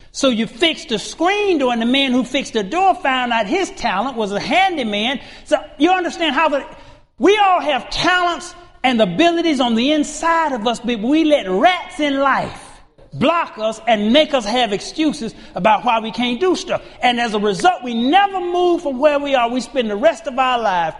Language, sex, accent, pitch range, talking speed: English, male, American, 205-295 Hz, 205 wpm